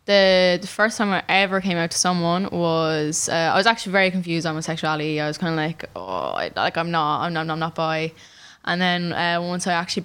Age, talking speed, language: 10-29, 250 wpm, English